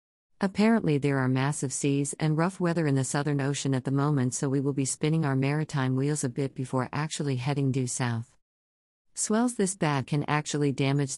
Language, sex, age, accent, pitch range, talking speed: English, female, 50-69, American, 130-155 Hz, 195 wpm